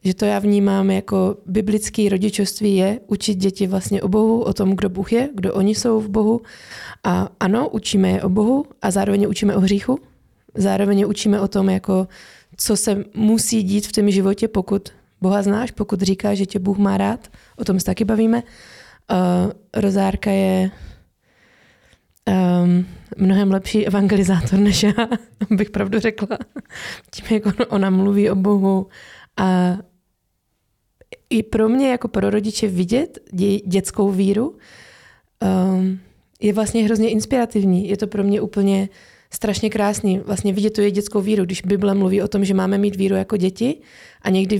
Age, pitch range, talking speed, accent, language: 20-39, 190-210 Hz, 165 wpm, native, Czech